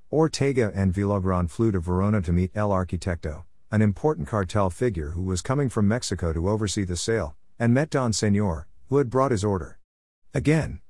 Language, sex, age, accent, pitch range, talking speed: English, male, 50-69, American, 90-120 Hz, 180 wpm